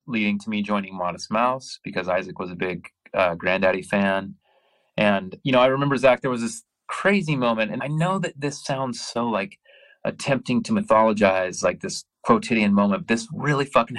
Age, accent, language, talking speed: 30-49, American, English, 185 wpm